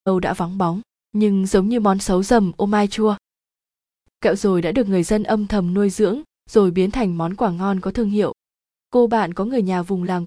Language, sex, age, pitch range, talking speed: Vietnamese, female, 20-39, 185-220 Hz, 230 wpm